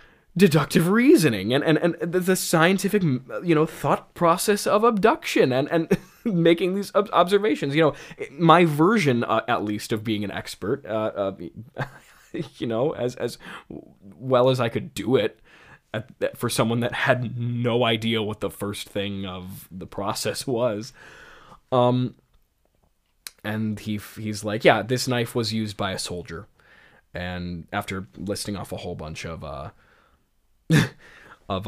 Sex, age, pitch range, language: male, 20-39, 110-160 Hz, English